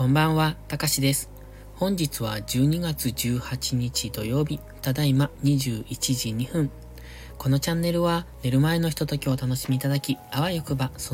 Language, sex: Japanese, male